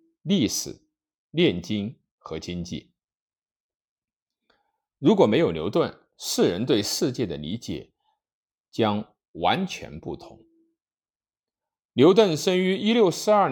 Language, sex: Chinese, male